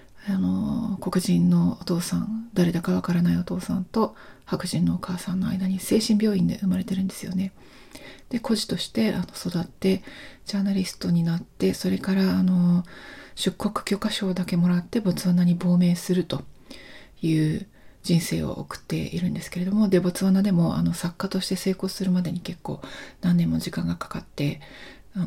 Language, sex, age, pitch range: Japanese, female, 40-59, 180-210 Hz